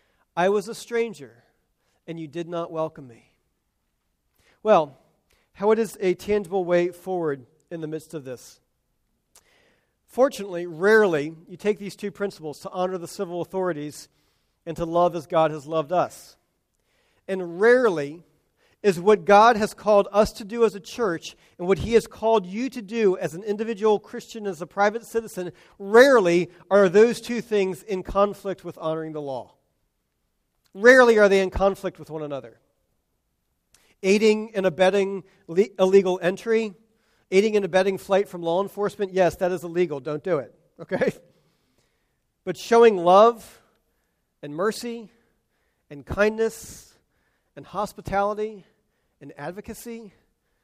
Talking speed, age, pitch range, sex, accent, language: 145 wpm, 40-59, 165-210 Hz, male, American, English